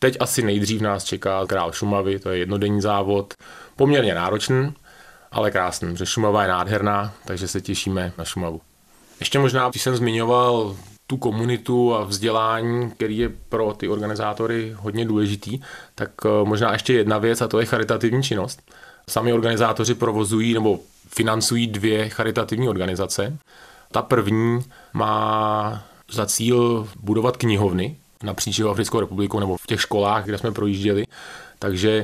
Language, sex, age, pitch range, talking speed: Czech, male, 30-49, 100-115 Hz, 140 wpm